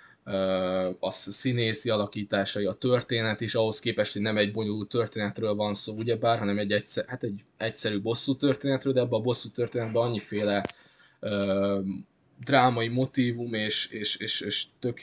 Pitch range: 100-125 Hz